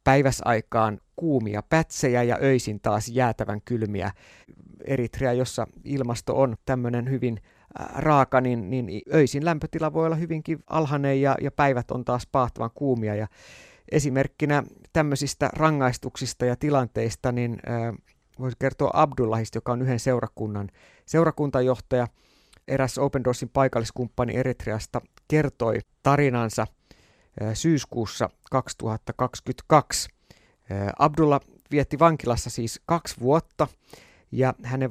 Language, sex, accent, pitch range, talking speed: Finnish, male, native, 115-140 Hz, 105 wpm